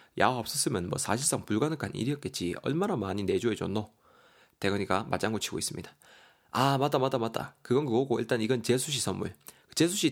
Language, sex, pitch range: Korean, male, 110-140 Hz